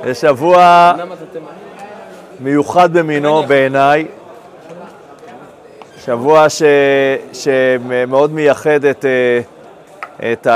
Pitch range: 120-150 Hz